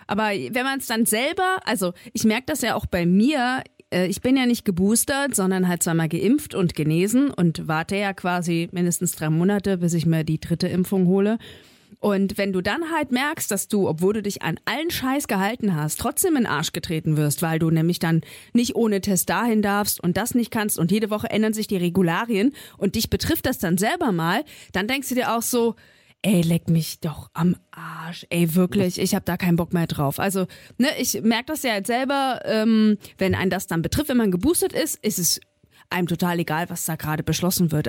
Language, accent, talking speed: German, German, 215 wpm